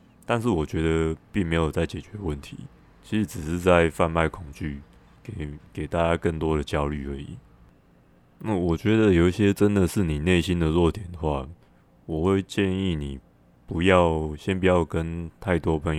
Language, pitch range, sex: Chinese, 75-95 Hz, male